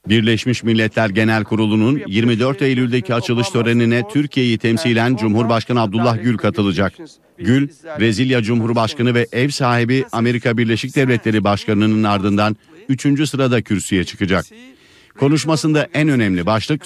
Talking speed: 115 wpm